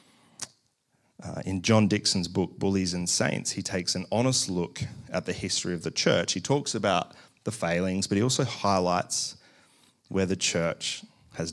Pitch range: 90-110 Hz